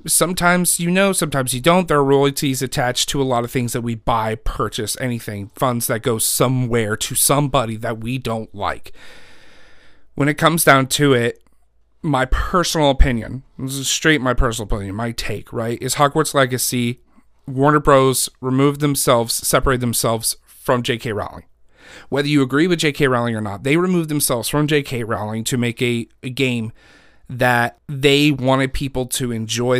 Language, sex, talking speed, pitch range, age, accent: English, male, 170 wpm, 115-140 Hz, 40-59, American